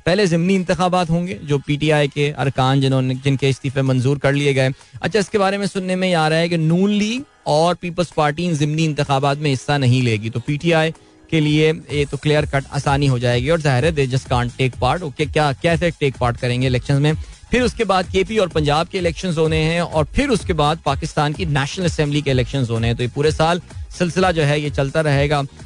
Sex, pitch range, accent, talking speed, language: male, 135-180 Hz, native, 220 wpm, Hindi